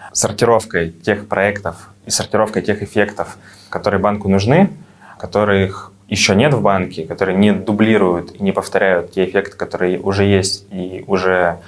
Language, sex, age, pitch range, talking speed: Russian, male, 20-39, 90-105 Hz, 145 wpm